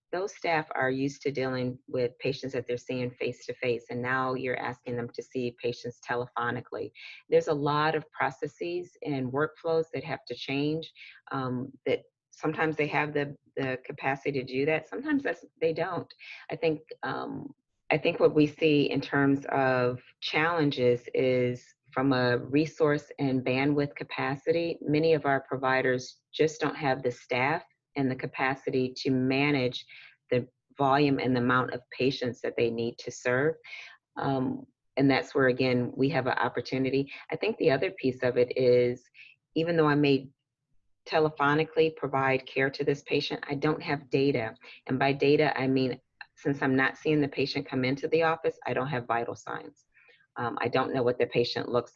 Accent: American